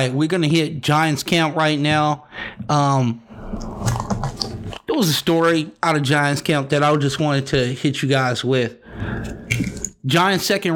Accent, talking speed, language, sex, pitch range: American, 150 wpm, English, male, 125-150 Hz